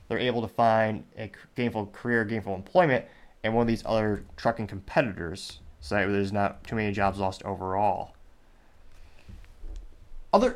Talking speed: 140 wpm